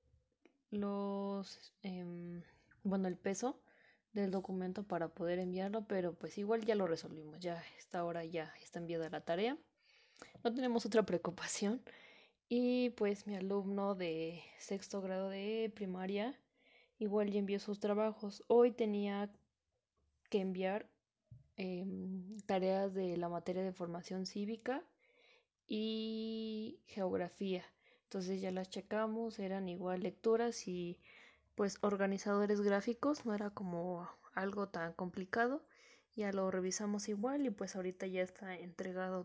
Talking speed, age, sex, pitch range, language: 125 wpm, 20-39, female, 185-220 Hz, English